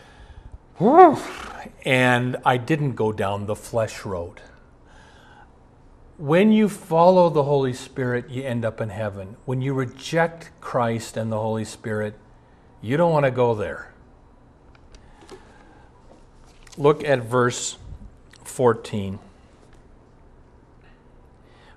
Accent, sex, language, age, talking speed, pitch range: American, male, English, 50-69, 100 wpm, 110-155 Hz